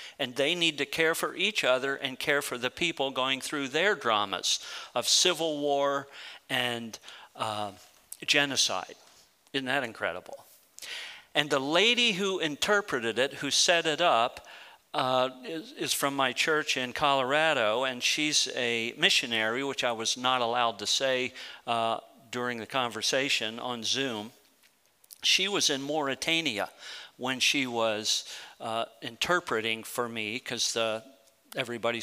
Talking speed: 140 wpm